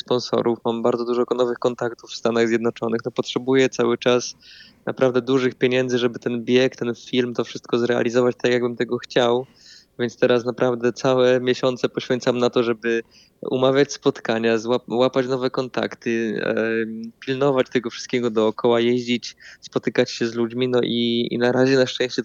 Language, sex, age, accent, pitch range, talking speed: Polish, male, 20-39, native, 115-130 Hz, 160 wpm